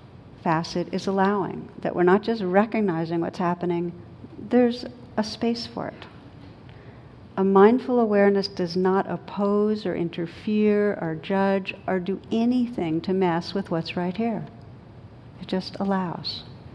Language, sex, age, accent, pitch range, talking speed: English, female, 60-79, American, 175-205 Hz, 145 wpm